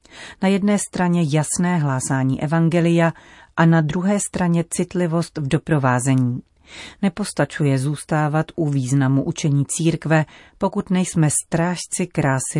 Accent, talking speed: native, 110 wpm